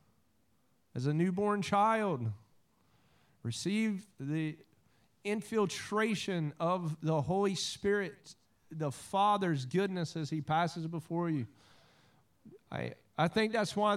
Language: English